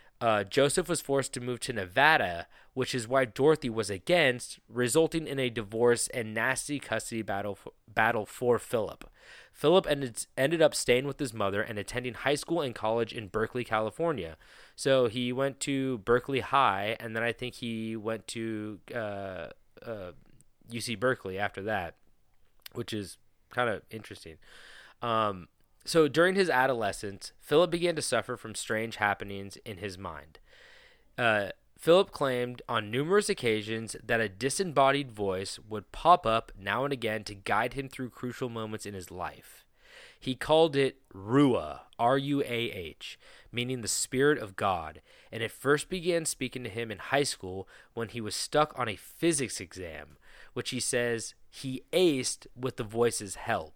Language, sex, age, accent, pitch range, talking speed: English, male, 20-39, American, 110-135 Hz, 160 wpm